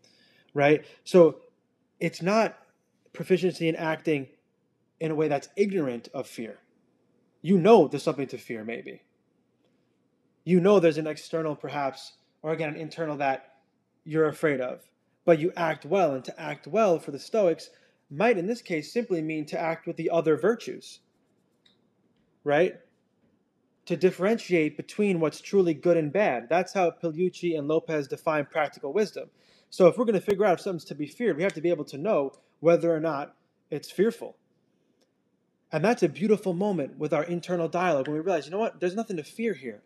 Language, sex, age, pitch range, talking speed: English, male, 20-39, 155-190 Hz, 180 wpm